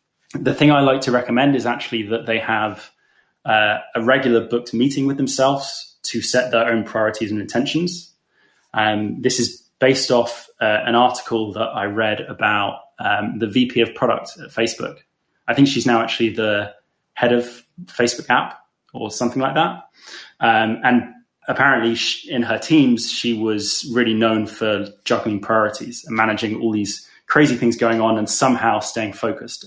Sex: male